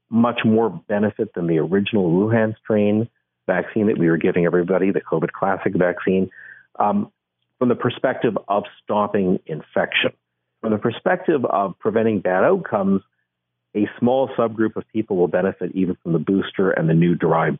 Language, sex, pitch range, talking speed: English, male, 85-110 Hz, 160 wpm